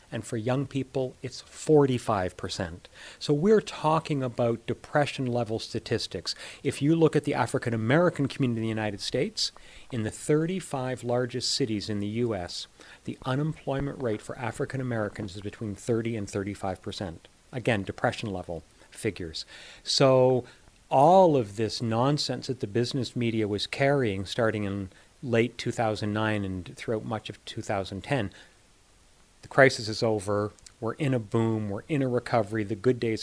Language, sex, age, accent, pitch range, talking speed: English, male, 40-59, American, 105-130 Hz, 145 wpm